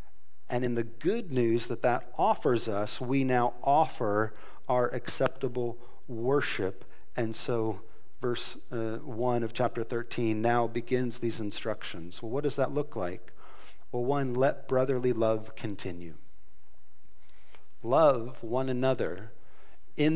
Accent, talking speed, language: American, 130 wpm, English